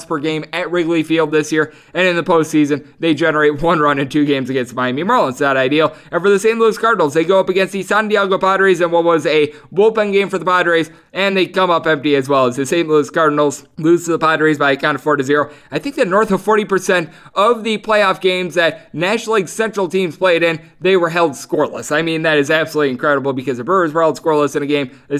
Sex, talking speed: male, 250 wpm